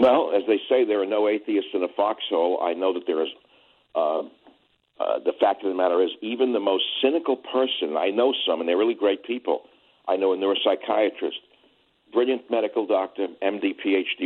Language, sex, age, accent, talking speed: English, male, 60-79, American, 195 wpm